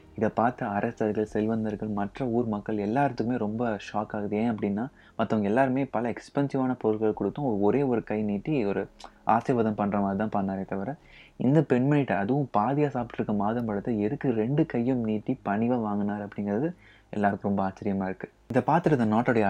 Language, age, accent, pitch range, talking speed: Tamil, 20-39, native, 105-125 Hz, 155 wpm